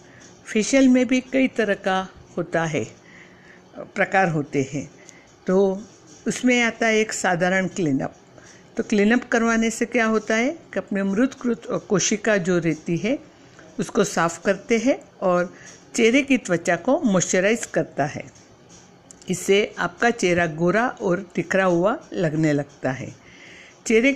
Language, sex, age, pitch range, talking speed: Hindi, female, 60-79, 175-230 Hz, 140 wpm